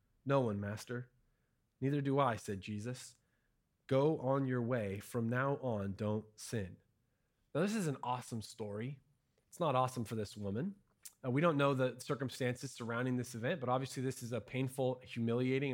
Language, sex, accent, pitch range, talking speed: English, male, American, 120-155 Hz, 170 wpm